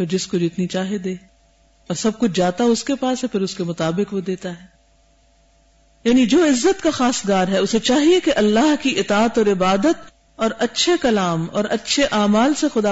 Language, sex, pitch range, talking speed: Urdu, female, 180-235 Hz, 195 wpm